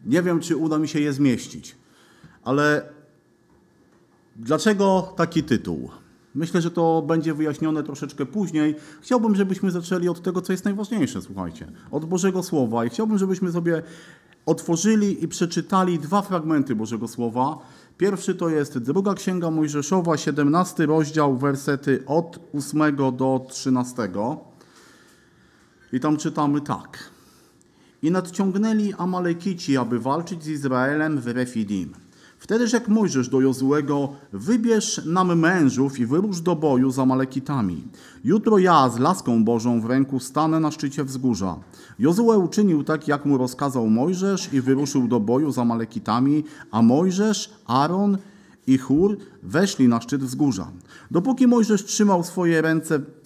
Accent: native